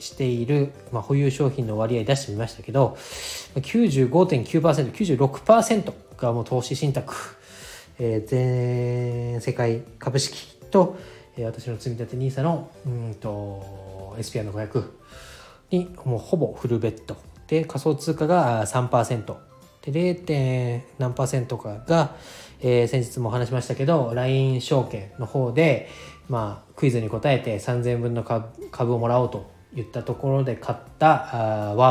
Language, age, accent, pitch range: Japanese, 20-39, native, 115-140 Hz